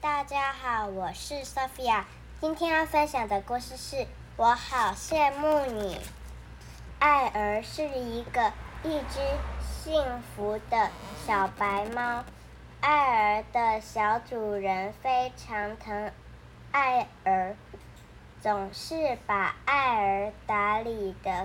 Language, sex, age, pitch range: Chinese, male, 10-29, 195-260 Hz